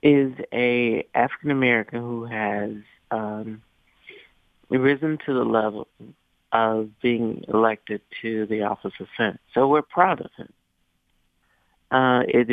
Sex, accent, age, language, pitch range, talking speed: male, American, 50-69, English, 115-145 Hz, 120 wpm